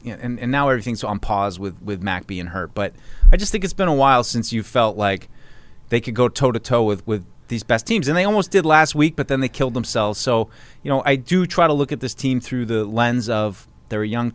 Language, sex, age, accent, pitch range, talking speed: English, male, 30-49, American, 105-135 Hz, 255 wpm